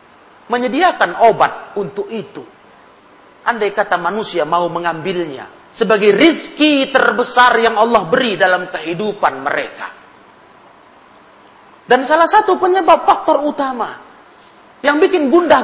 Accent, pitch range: native, 205-300 Hz